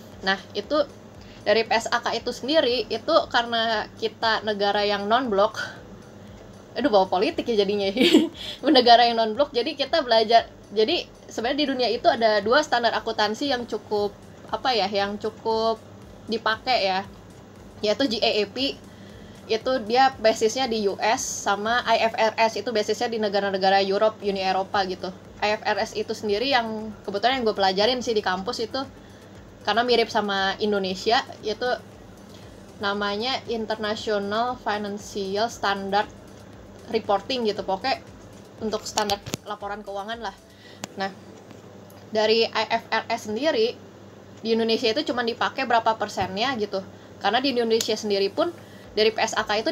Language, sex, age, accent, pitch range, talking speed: Indonesian, female, 20-39, native, 195-230 Hz, 130 wpm